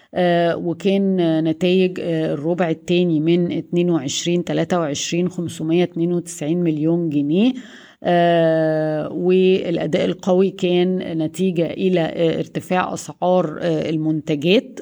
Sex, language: female, Arabic